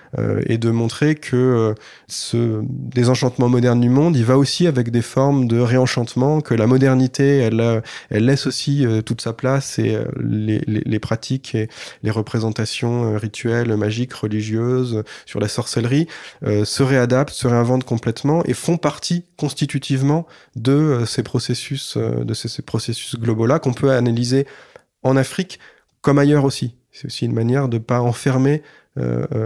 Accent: French